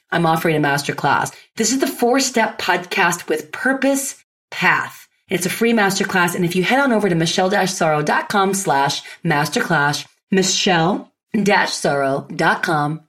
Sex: female